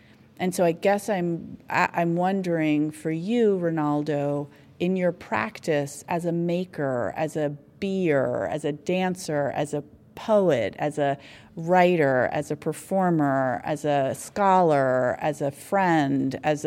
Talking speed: 135 wpm